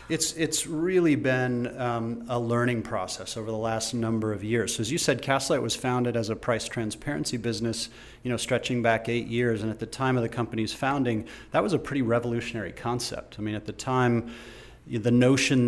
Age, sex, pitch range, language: 40-59, male, 115-130 Hz, English